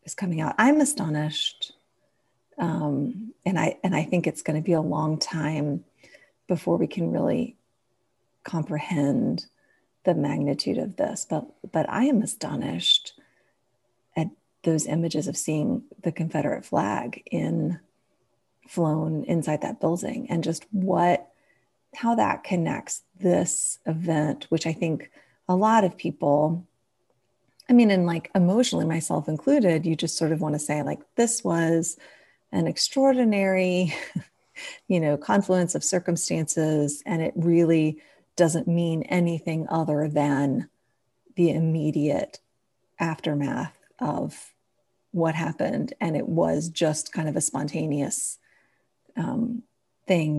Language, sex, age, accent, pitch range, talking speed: English, female, 30-49, American, 150-180 Hz, 125 wpm